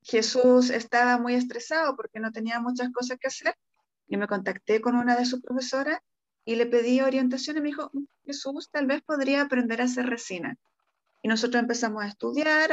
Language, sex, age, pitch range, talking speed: Spanish, female, 30-49, 230-265 Hz, 185 wpm